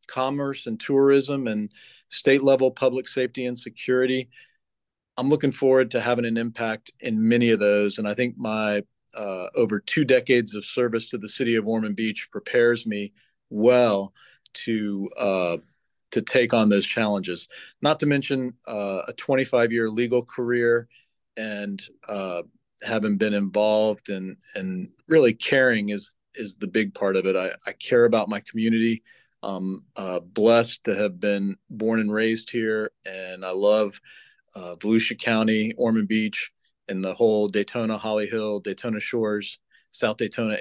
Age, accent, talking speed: 40-59, American, 155 wpm